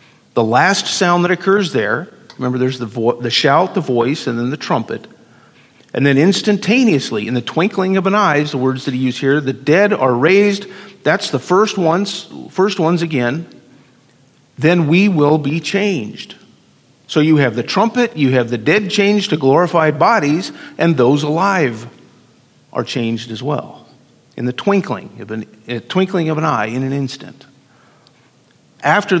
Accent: American